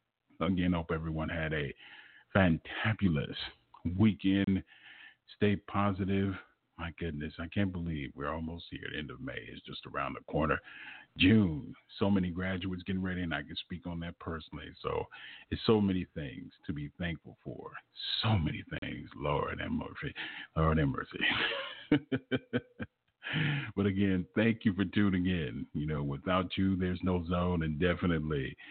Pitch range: 85-100 Hz